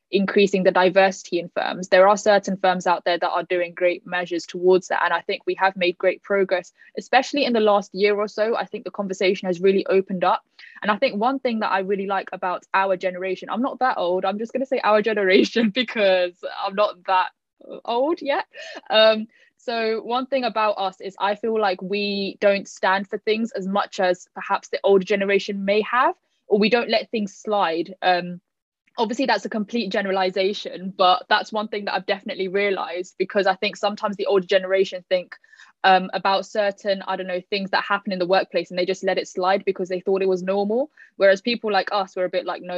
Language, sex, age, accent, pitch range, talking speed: English, female, 10-29, British, 185-215 Hz, 215 wpm